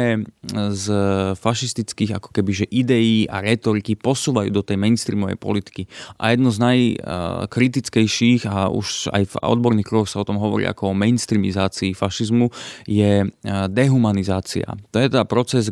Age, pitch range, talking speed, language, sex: 20-39, 100-120 Hz, 140 wpm, Slovak, male